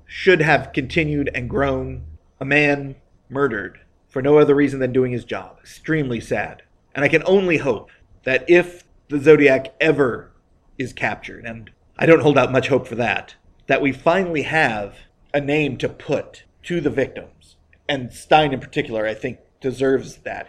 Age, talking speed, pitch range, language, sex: 40-59, 170 wpm, 125-165 Hz, English, male